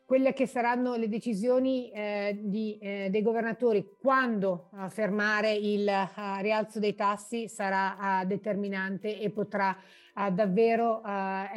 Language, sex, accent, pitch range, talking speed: Italian, female, native, 195-225 Hz, 130 wpm